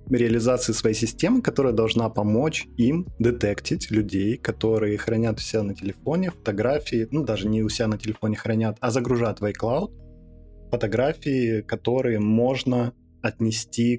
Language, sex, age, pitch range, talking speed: Ukrainian, male, 20-39, 105-125 Hz, 135 wpm